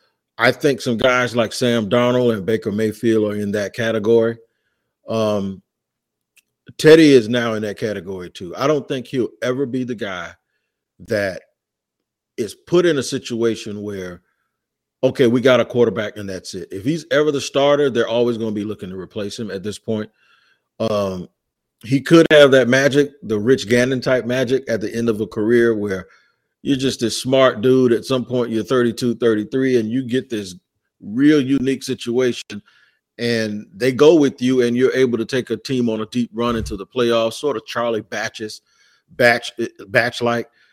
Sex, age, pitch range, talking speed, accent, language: male, 40-59, 110-130 Hz, 180 wpm, American, English